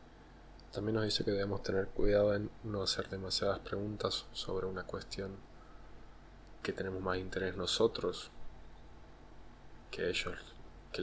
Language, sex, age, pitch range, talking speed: Spanish, male, 20-39, 80-100 Hz, 125 wpm